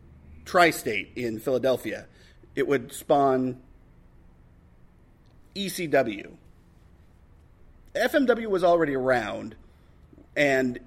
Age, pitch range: 40-59, 110-160 Hz